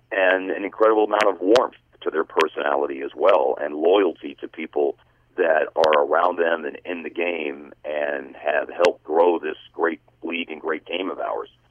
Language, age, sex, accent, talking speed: English, 40-59, male, American, 180 wpm